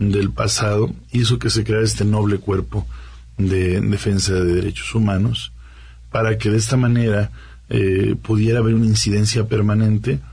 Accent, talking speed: Mexican, 145 wpm